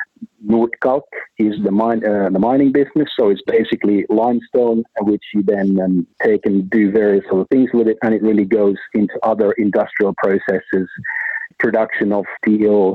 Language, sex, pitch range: English, male, 100-115 Hz